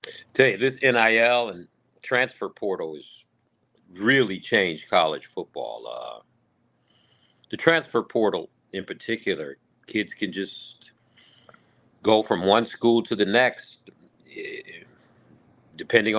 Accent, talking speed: American, 110 wpm